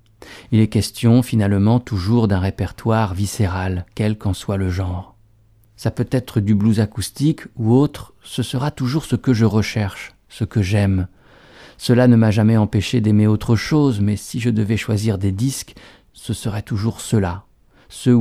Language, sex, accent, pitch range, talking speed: French, male, French, 100-120 Hz, 170 wpm